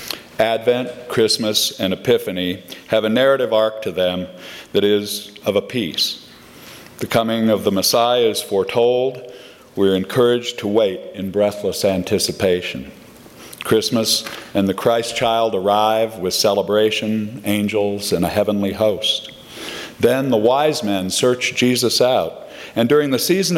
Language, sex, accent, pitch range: English, male, American, 100-125 Hz